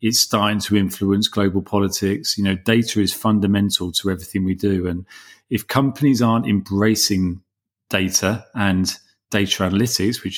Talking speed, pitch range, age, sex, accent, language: 145 wpm, 95-115 Hz, 40-59, male, British, English